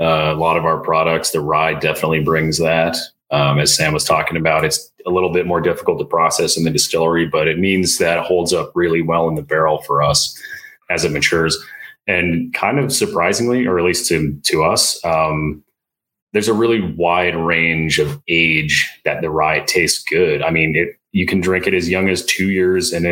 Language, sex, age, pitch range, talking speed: English, male, 30-49, 80-90 Hz, 210 wpm